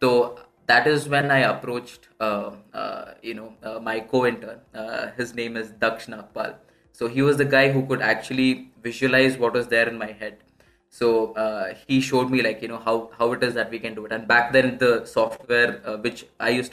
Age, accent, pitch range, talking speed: 20-39, native, 115-130 Hz, 215 wpm